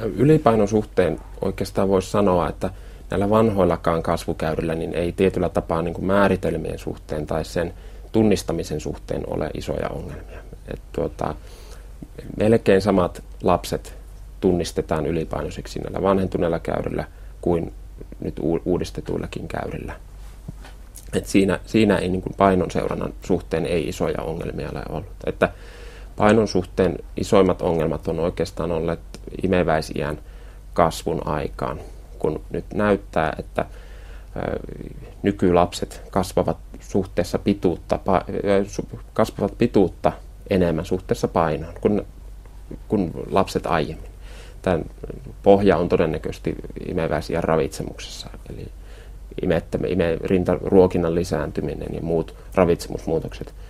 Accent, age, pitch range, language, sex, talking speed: native, 30-49, 80-100 Hz, Finnish, male, 100 wpm